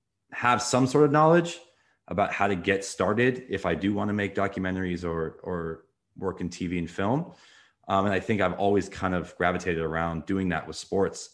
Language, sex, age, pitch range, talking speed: English, male, 20-39, 85-95 Hz, 200 wpm